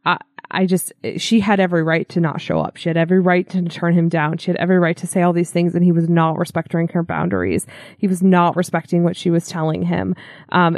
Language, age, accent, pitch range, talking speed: English, 20-39, American, 165-185 Hz, 245 wpm